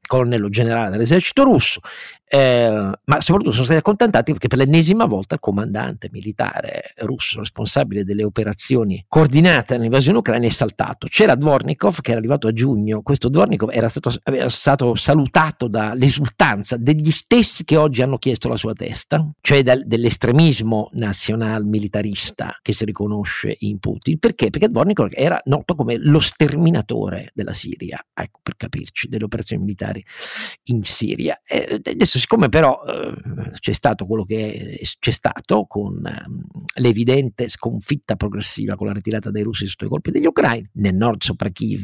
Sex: male